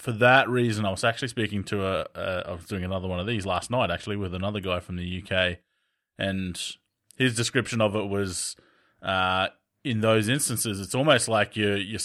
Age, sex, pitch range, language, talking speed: 20-39, male, 95-115 Hz, English, 205 wpm